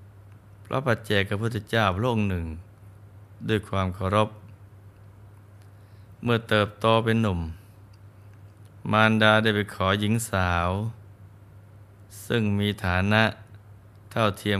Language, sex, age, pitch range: Thai, male, 20-39, 100-105 Hz